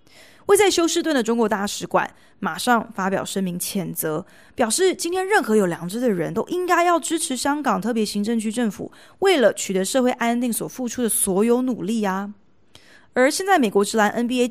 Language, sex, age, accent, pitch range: Chinese, female, 20-39, native, 190-250 Hz